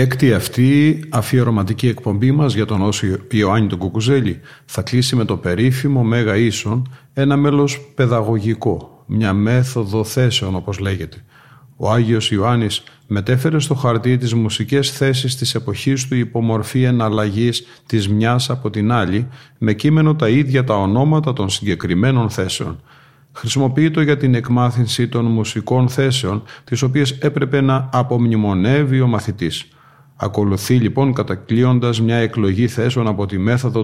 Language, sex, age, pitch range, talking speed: Greek, male, 40-59, 110-135 Hz, 140 wpm